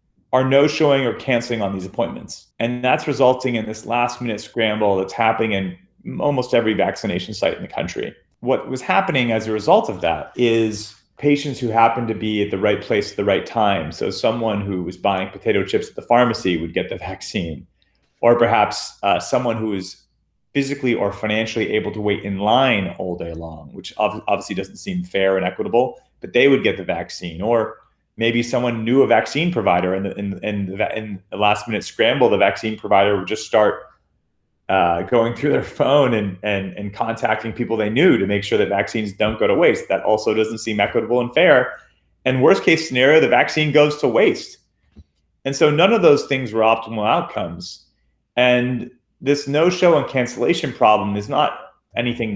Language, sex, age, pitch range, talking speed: English, male, 30-49, 100-125 Hz, 195 wpm